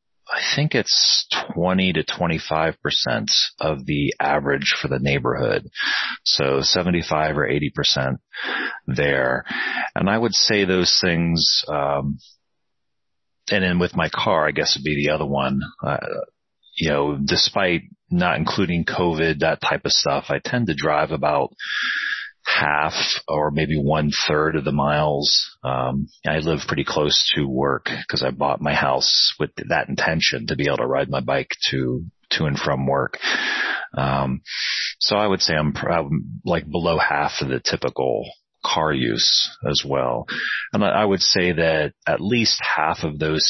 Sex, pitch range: male, 70-85 Hz